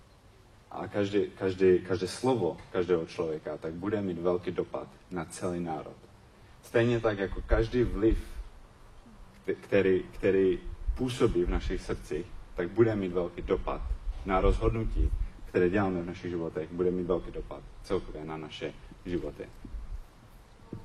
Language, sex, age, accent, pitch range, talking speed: Czech, male, 30-49, native, 80-100 Hz, 125 wpm